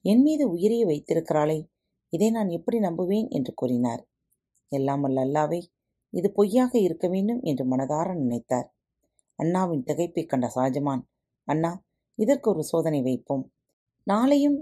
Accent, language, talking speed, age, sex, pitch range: native, Tamil, 120 wpm, 30-49, female, 140-210 Hz